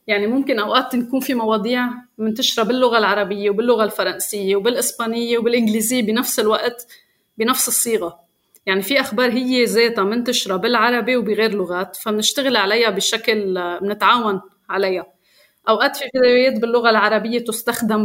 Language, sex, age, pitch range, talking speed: Arabic, female, 30-49, 200-245 Hz, 125 wpm